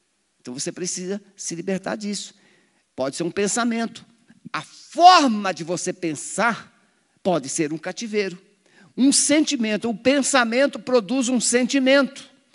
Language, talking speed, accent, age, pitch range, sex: Portuguese, 125 wpm, Brazilian, 50-69, 195-270 Hz, male